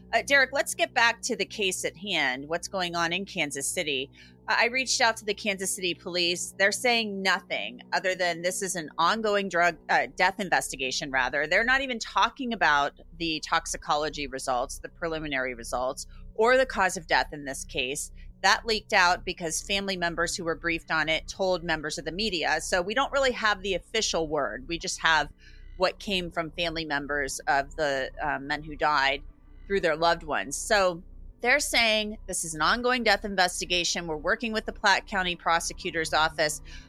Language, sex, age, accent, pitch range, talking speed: English, female, 30-49, American, 165-210 Hz, 190 wpm